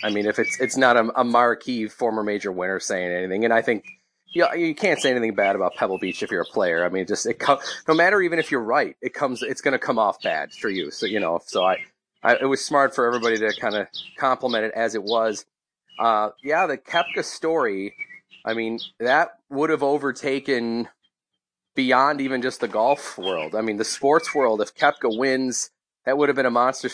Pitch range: 115-145 Hz